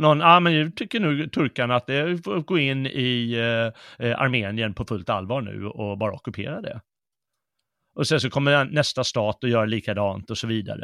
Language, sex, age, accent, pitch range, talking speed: Swedish, male, 30-49, native, 115-150 Hz, 200 wpm